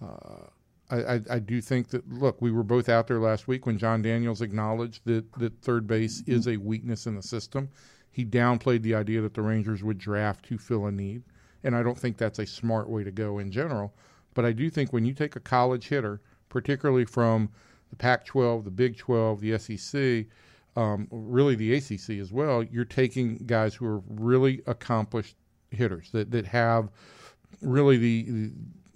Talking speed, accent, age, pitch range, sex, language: 195 wpm, American, 40-59, 110-125 Hz, male, English